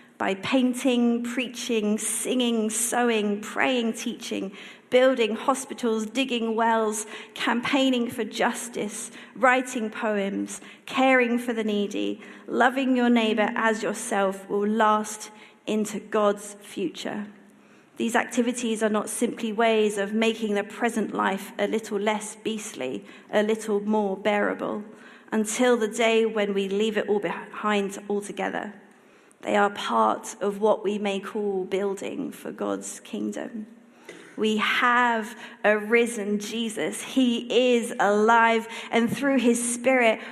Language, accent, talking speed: English, British, 125 wpm